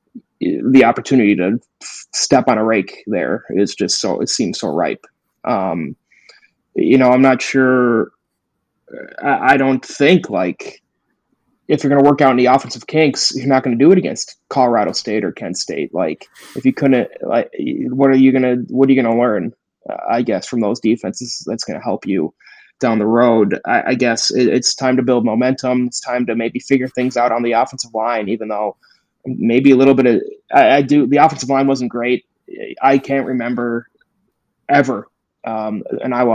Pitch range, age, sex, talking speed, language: 115-135 Hz, 20-39, male, 195 wpm, English